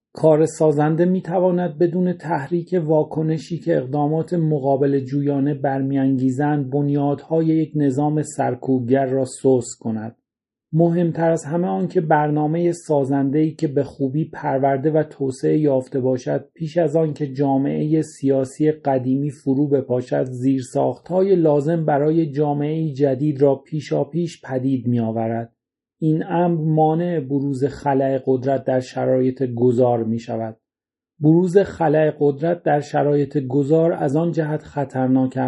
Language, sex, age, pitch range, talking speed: Persian, male, 40-59, 135-160 Hz, 120 wpm